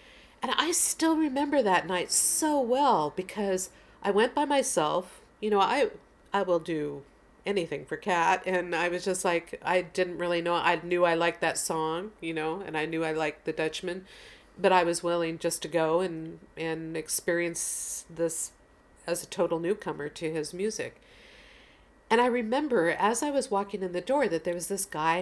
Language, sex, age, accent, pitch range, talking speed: English, female, 50-69, American, 160-210 Hz, 190 wpm